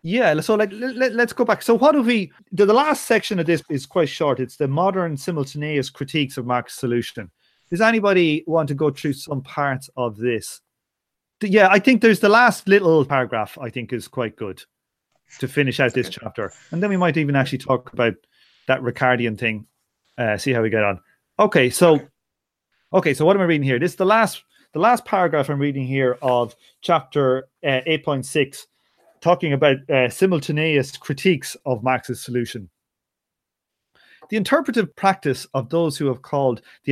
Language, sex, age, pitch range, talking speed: English, male, 30-49, 125-175 Hz, 185 wpm